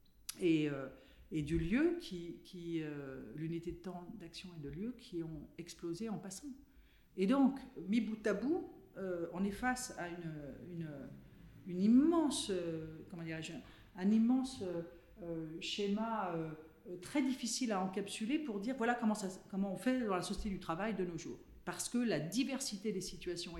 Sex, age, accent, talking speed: female, 50-69, French, 175 wpm